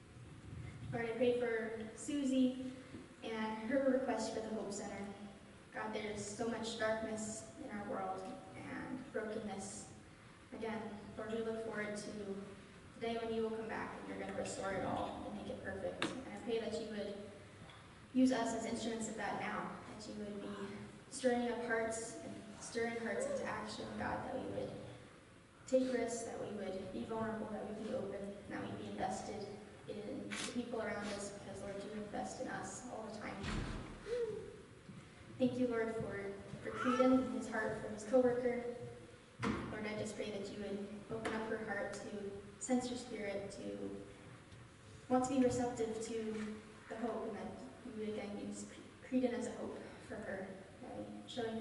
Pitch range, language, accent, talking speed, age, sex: 200-240 Hz, English, American, 180 wpm, 10-29, female